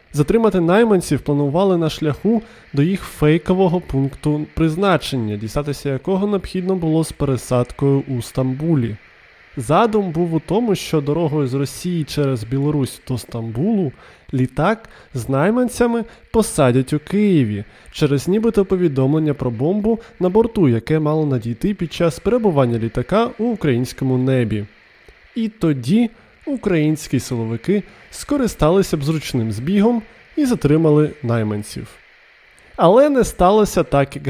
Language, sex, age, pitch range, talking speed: Ukrainian, male, 20-39, 135-200 Hz, 120 wpm